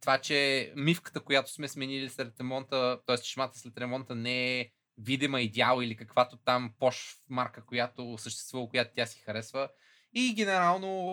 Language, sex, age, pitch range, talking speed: Bulgarian, male, 20-39, 120-145 Hz, 155 wpm